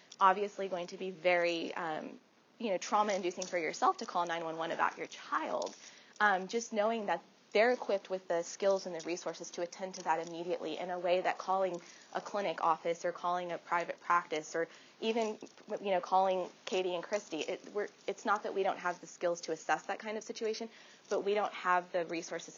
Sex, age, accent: female, 20-39, American